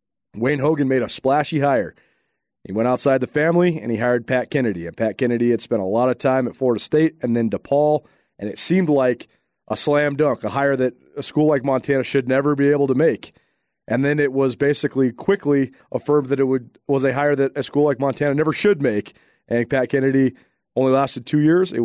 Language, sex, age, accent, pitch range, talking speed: English, male, 30-49, American, 120-145 Hz, 220 wpm